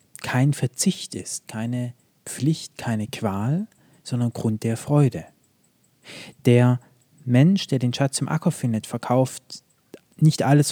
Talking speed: 125 wpm